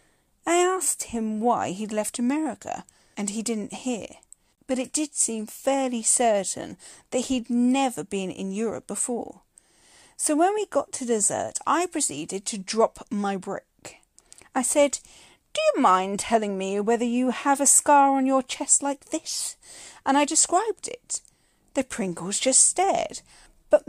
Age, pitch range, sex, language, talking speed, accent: 40-59, 220-305 Hz, female, English, 155 wpm, British